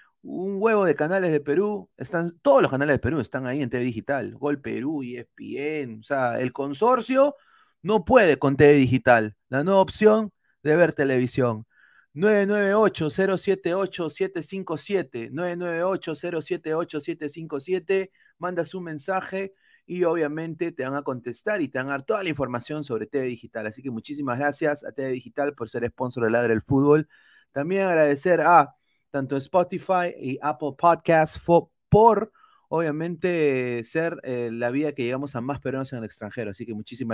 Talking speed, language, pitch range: 155 wpm, Spanish, 130-180 Hz